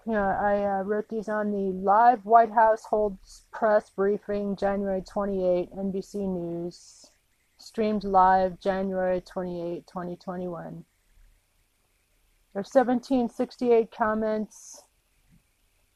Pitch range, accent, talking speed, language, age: 180-225 Hz, American, 90 wpm, English, 30-49